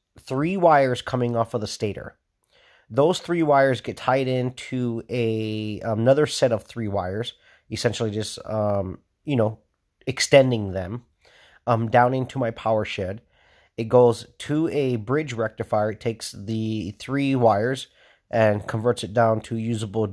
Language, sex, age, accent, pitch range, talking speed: English, male, 30-49, American, 105-130 Hz, 145 wpm